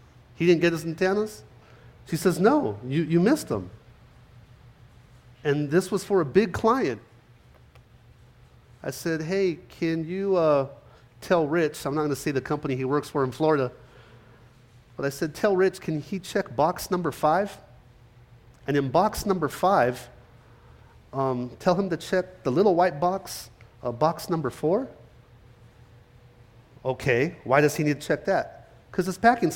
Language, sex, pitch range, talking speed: English, male, 120-160 Hz, 160 wpm